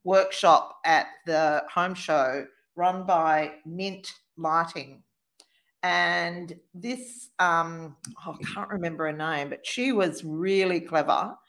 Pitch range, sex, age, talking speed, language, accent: 150-190 Hz, female, 50-69, 115 wpm, English, Australian